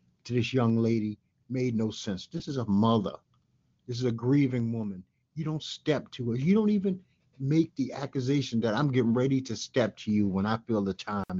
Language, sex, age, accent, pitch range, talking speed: English, male, 50-69, American, 110-150 Hz, 210 wpm